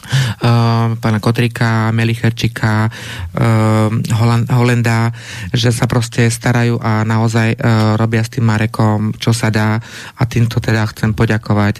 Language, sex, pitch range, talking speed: Slovak, male, 110-120 Hz, 110 wpm